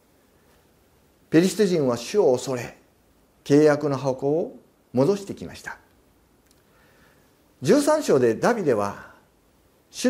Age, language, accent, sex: 50-69, Japanese, native, male